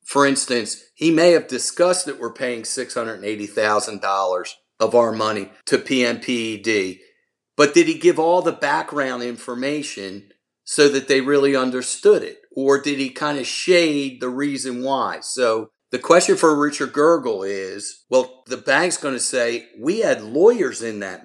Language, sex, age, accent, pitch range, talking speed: English, male, 50-69, American, 125-175 Hz, 160 wpm